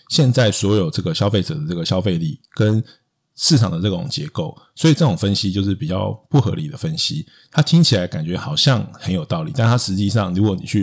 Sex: male